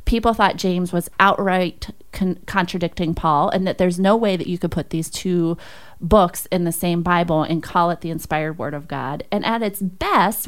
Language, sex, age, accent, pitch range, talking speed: English, female, 30-49, American, 175-215 Hz, 200 wpm